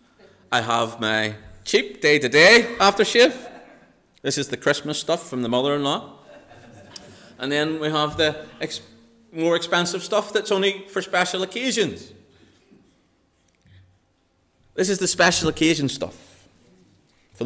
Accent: British